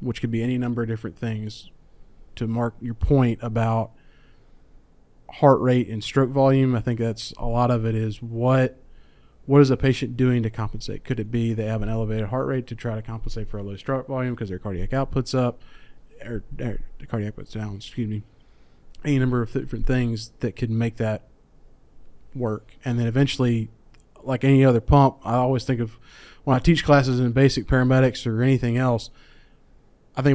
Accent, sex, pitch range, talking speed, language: American, male, 110-130 Hz, 195 wpm, English